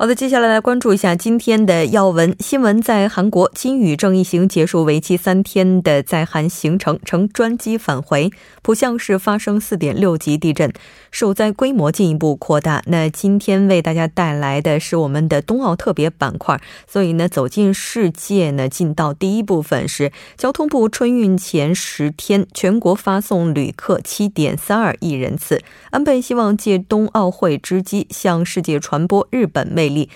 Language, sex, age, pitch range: Korean, female, 20-39, 160-210 Hz